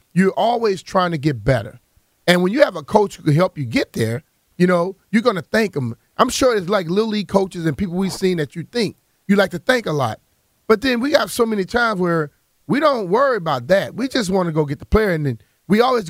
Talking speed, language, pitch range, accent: 260 wpm, English, 155-215 Hz, American